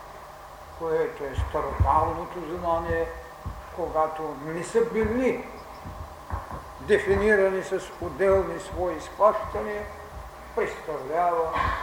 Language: Bulgarian